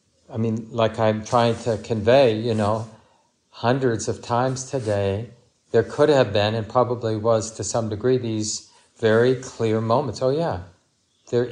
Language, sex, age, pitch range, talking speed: English, male, 40-59, 110-130 Hz, 155 wpm